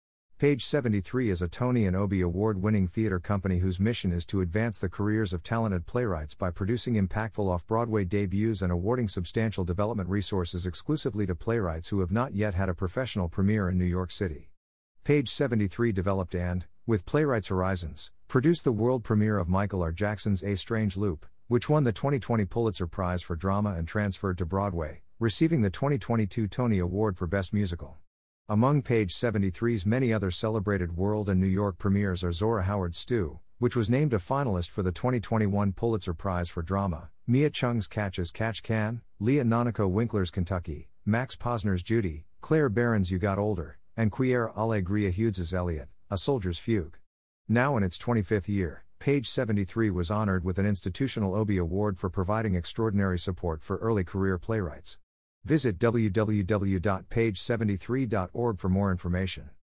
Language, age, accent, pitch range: English, 50-69, American, 90-115 Hz